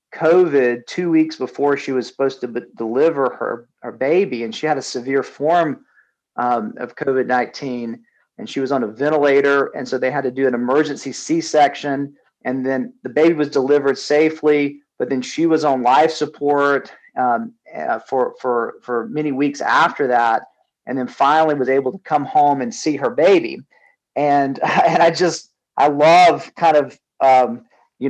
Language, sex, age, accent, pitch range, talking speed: English, male, 40-59, American, 130-160 Hz, 175 wpm